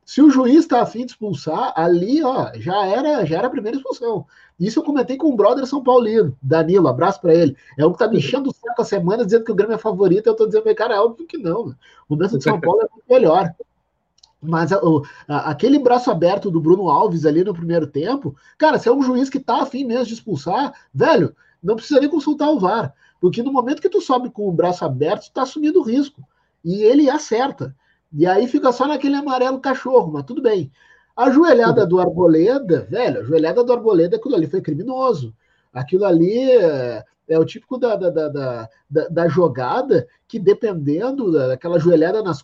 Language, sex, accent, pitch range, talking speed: Portuguese, male, Brazilian, 170-275 Hz, 210 wpm